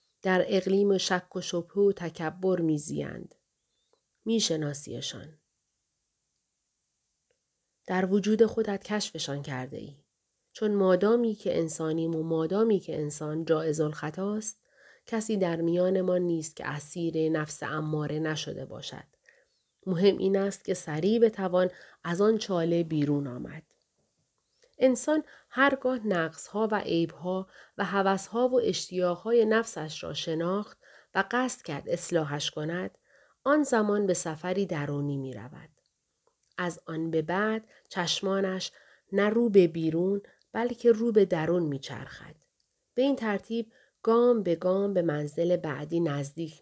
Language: Persian